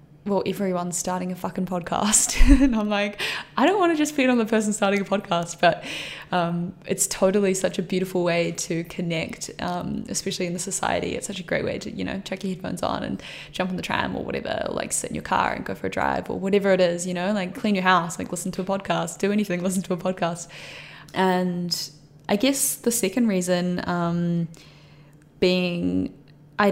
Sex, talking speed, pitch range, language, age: female, 215 wpm, 175-190 Hz, English, 10-29